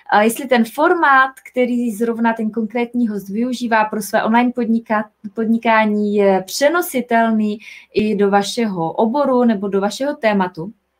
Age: 20-39